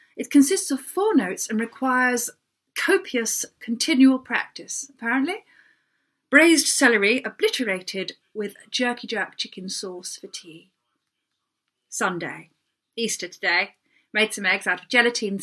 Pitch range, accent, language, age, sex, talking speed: 190-260 Hz, British, English, 30-49, female, 115 wpm